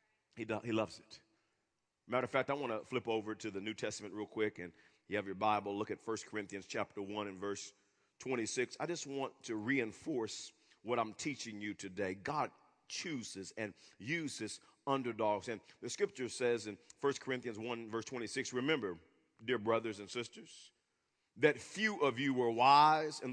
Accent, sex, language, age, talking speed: American, male, English, 40-59, 180 wpm